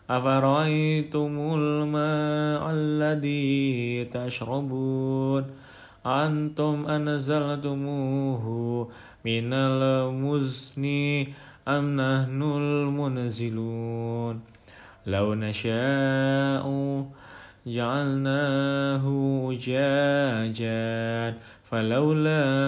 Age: 20-39